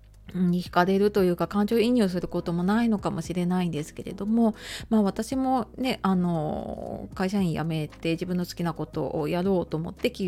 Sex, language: female, Japanese